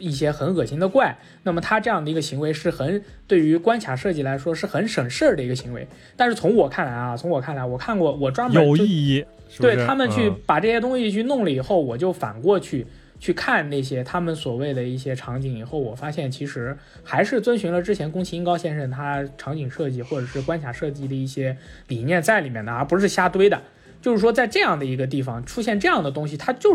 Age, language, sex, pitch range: 20-39, Chinese, male, 130-185 Hz